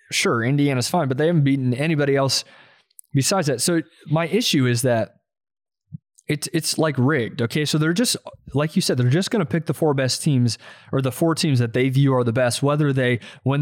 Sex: male